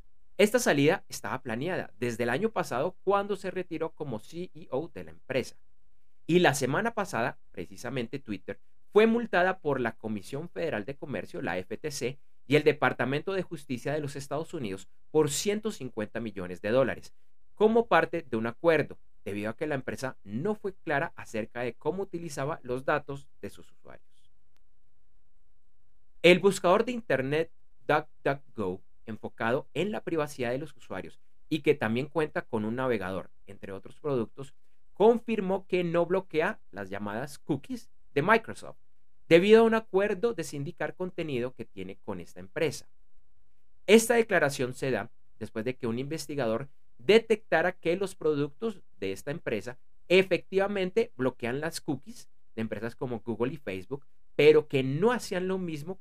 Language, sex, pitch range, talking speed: Spanish, male, 110-175 Hz, 155 wpm